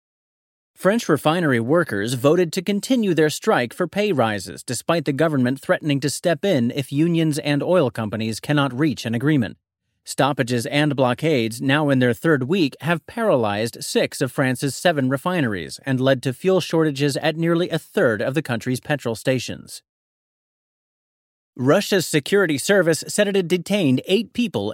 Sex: male